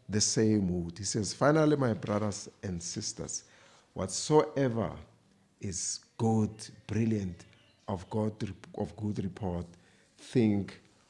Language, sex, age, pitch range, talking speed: English, male, 50-69, 105-140 Hz, 110 wpm